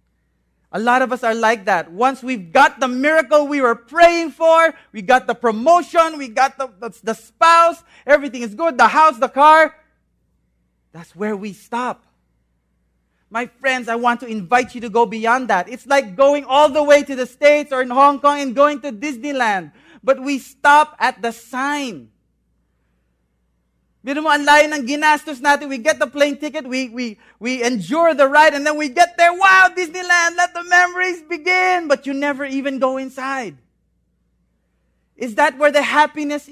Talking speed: 170 wpm